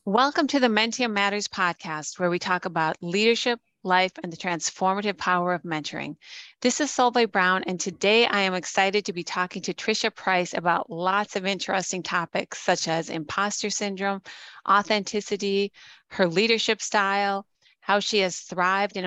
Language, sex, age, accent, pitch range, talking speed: English, female, 30-49, American, 180-205 Hz, 160 wpm